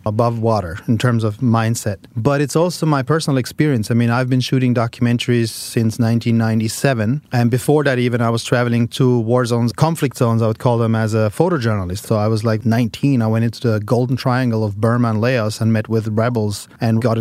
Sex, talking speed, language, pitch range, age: male, 210 wpm, English, 115-135 Hz, 30-49